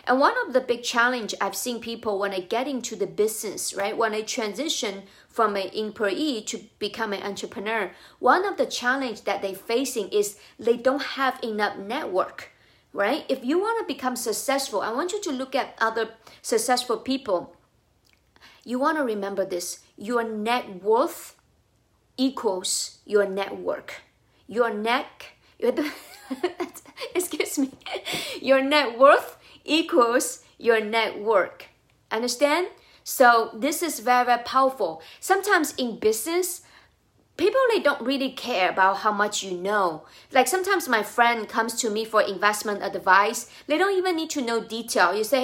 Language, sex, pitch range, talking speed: English, female, 210-275 Hz, 155 wpm